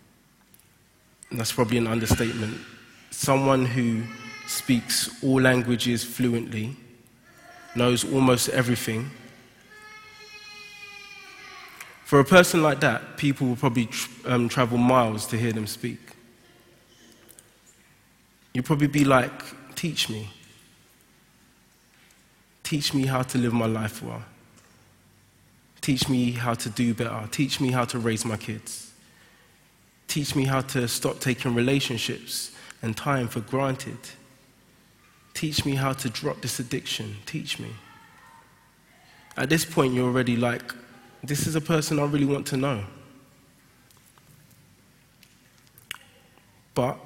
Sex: male